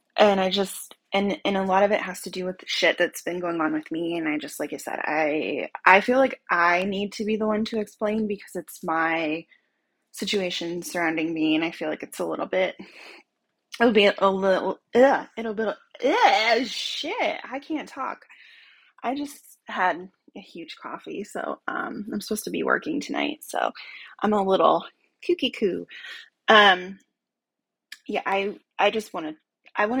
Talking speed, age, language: 185 wpm, 20-39, English